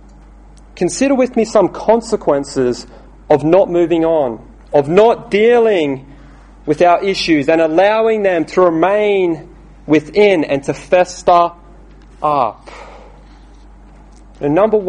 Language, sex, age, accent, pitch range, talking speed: English, male, 30-49, Australian, 175-235 Hz, 105 wpm